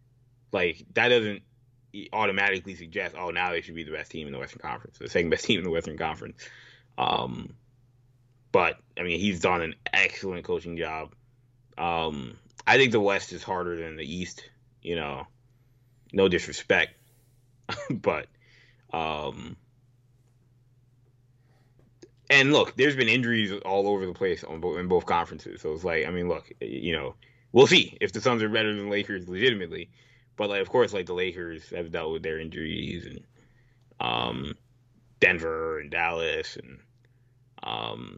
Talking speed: 160 wpm